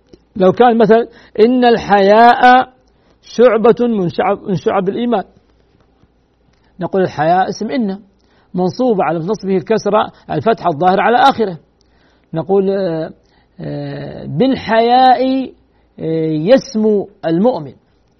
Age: 50-69